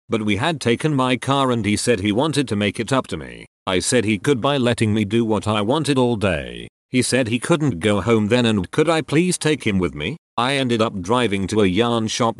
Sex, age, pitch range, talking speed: male, 40-59, 100-125 Hz, 255 wpm